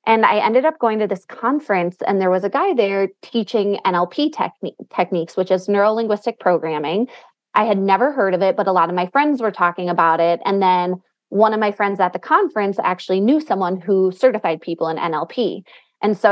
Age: 20-39